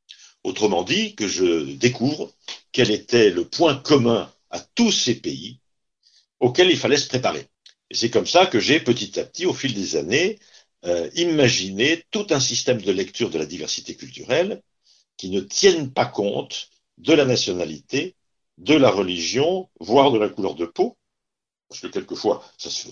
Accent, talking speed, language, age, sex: French, 175 wpm, French, 60-79, male